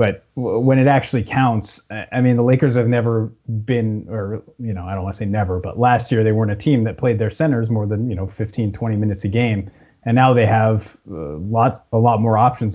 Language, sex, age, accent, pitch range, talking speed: English, male, 30-49, American, 110-130 Hz, 235 wpm